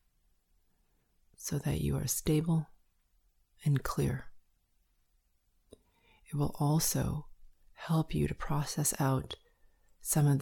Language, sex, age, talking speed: English, female, 30-49, 100 wpm